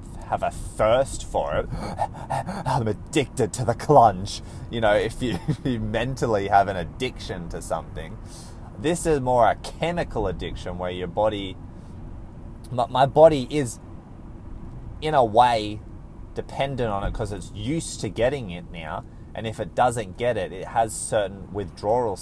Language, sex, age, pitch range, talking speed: English, male, 20-39, 90-135 Hz, 150 wpm